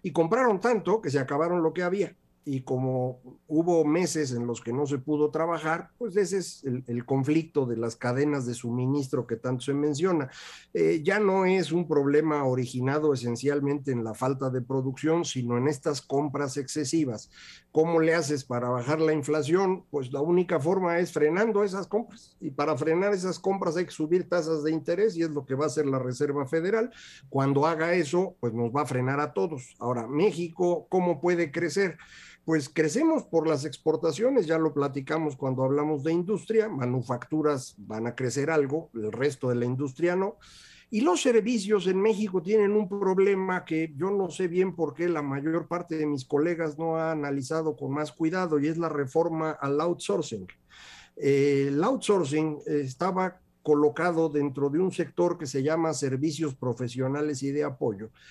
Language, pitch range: Spanish, 140-175 Hz